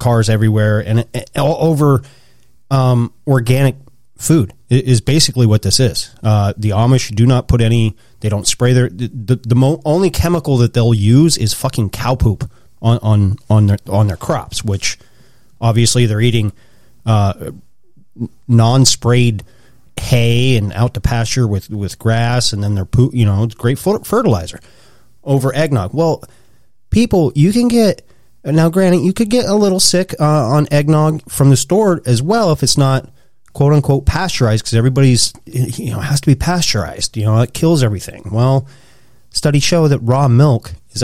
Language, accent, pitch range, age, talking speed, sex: English, American, 115-140 Hz, 30-49, 170 wpm, male